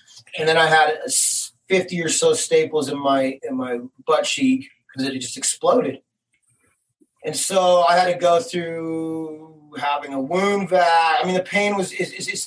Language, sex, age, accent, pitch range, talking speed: English, male, 30-49, American, 135-180 Hz, 180 wpm